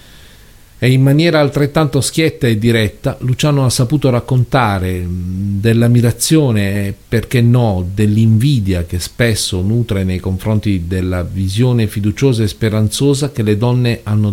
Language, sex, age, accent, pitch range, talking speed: Italian, male, 50-69, native, 100-125 Hz, 125 wpm